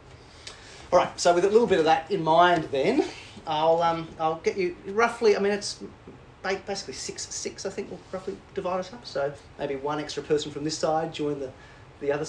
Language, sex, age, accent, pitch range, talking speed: English, male, 30-49, Australian, 130-175 Hz, 210 wpm